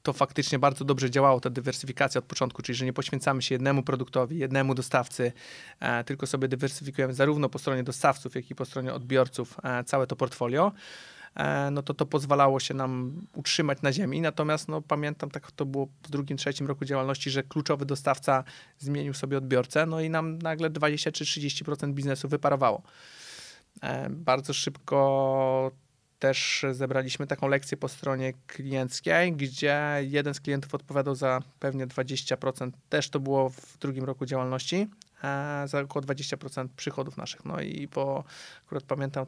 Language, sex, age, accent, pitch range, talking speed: Polish, male, 30-49, native, 130-145 Hz, 155 wpm